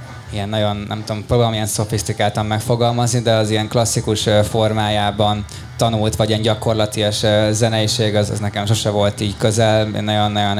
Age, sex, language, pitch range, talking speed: 20-39, male, Hungarian, 105-110 Hz, 155 wpm